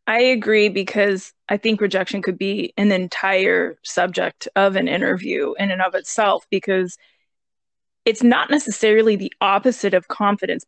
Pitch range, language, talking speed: 195-235 Hz, English, 145 wpm